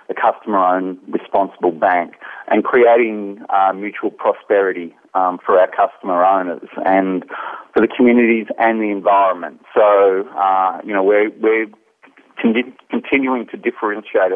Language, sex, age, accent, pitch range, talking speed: English, male, 40-59, Australian, 95-115 Hz, 125 wpm